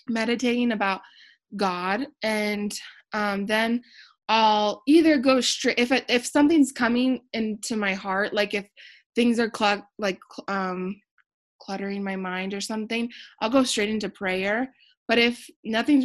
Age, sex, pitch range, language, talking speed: 20-39, female, 195-235 Hz, English, 135 wpm